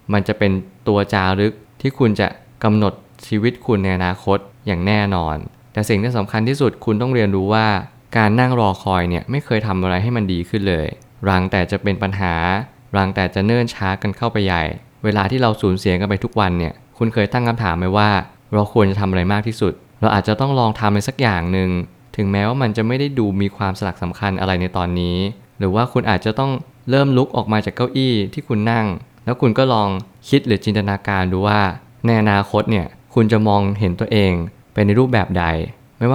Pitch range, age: 95-120 Hz, 20-39